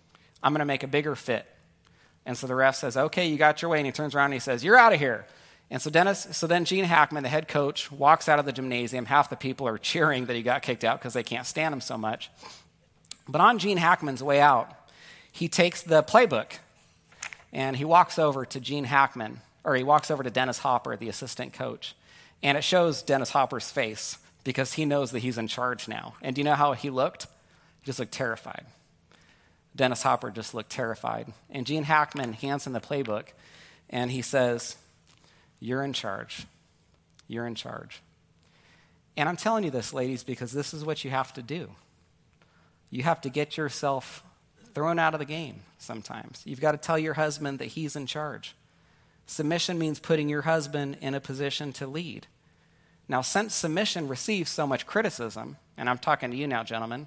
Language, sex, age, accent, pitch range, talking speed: English, male, 40-59, American, 130-155 Hz, 200 wpm